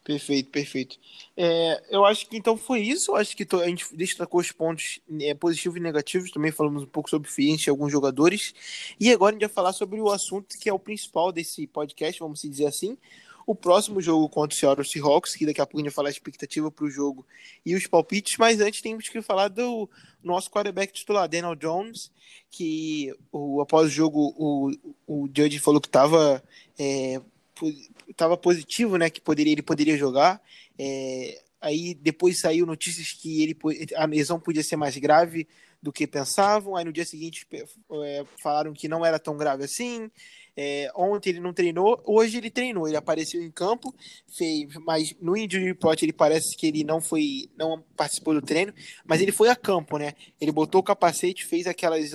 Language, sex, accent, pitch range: Portuguese, male, Brazilian, 150-200 Hz